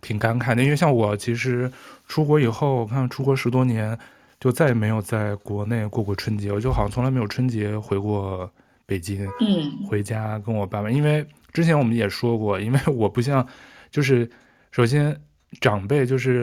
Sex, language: male, Chinese